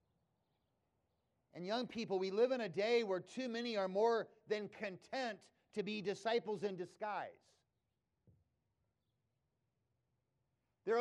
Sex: male